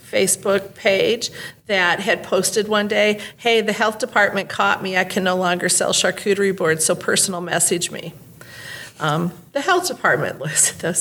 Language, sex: English, female